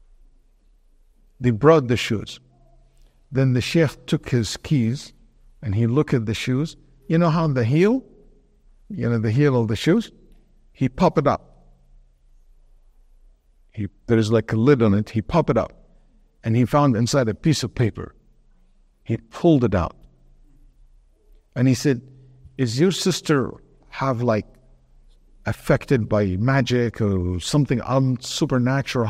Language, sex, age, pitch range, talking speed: English, male, 60-79, 110-155 Hz, 140 wpm